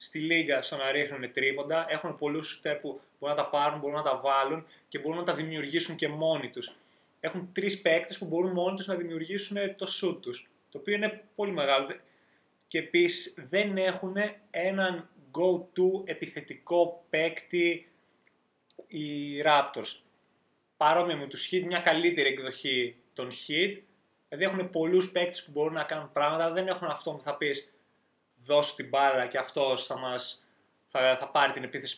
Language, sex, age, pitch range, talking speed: Greek, male, 20-39, 145-190 Hz, 165 wpm